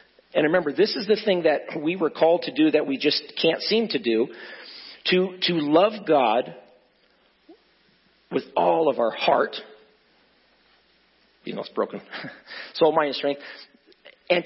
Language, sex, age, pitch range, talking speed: English, male, 40-59, 140-210 Hz, 155 wpm